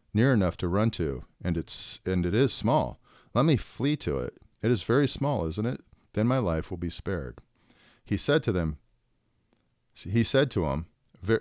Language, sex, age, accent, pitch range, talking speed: English, male, 50-69, American, 85-115 Hz, 195 wpm